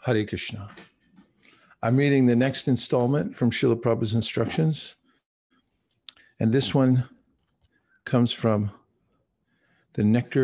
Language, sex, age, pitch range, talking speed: English, male, 50-69, 110-125 Hz, 105 wpm